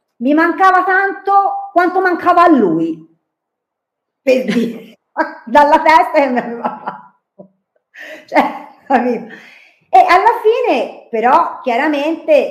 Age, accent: 40-59, native